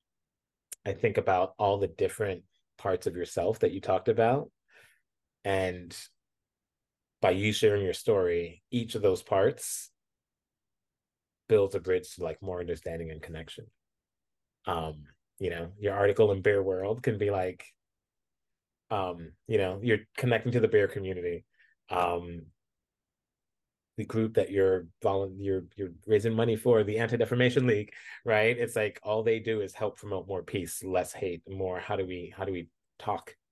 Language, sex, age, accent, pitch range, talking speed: English, male, 30-49, American, 90-115 Hz, 155 wpm